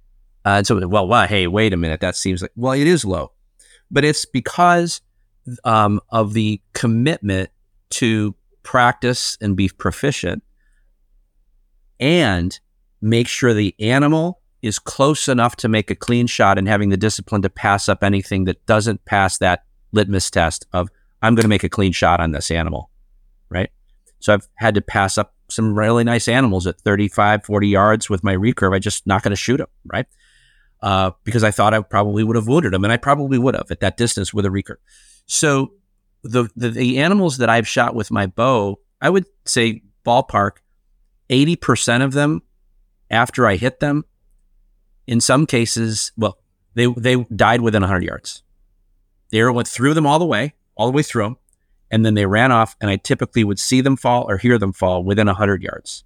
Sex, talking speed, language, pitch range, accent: male, 190 wpm, English, 95-120 Hz, American